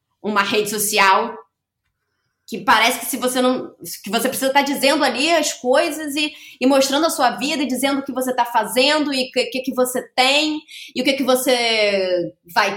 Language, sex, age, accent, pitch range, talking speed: Portuguese, female, 20-39, Brazilian, 215-300 Hz, 200 wpm